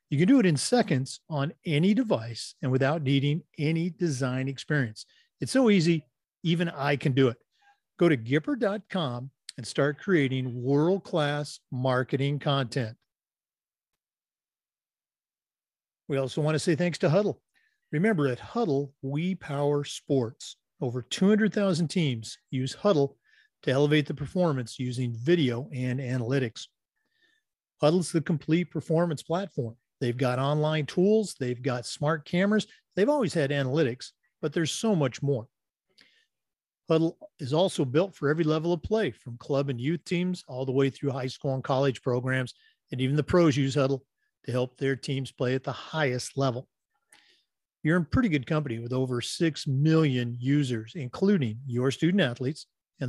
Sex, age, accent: male, 40-59, American